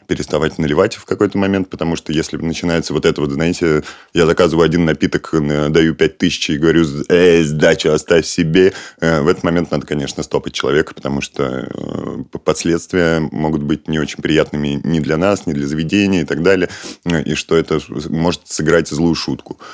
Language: Russian